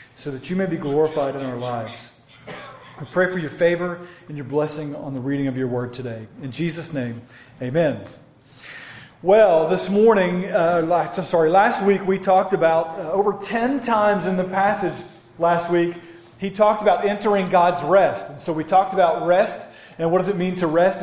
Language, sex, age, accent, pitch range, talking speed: English, male, 40-59, American, 155-195 Hz, 190 wpm